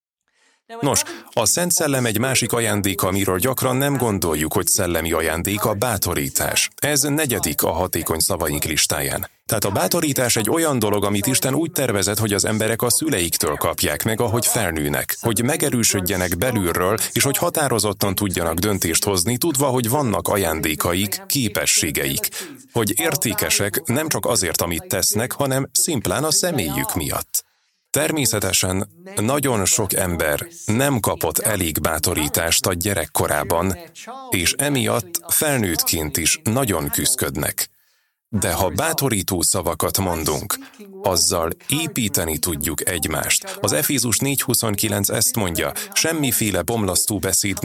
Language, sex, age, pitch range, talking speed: Hungarian, male, 30-49, 95-135 Hz, 125 wpm